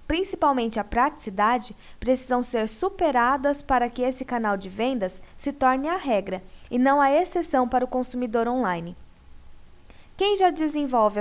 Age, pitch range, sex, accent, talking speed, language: 10-29, 225-285 Hz, female, Brazilian, 145 wpm, Portuguese